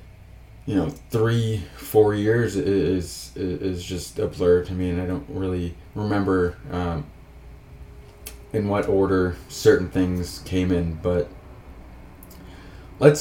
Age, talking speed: 20-39, 125 wpm